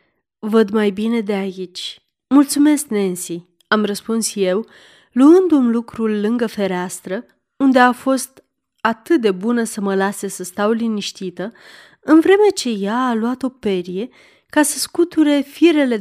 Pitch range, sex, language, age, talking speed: 195-250 Hz, female, Romanian, 30-49, 145 wpm